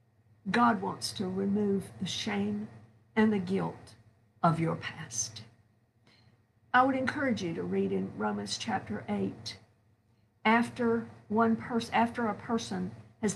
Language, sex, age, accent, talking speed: English, female, 50-69, American, 130 wpm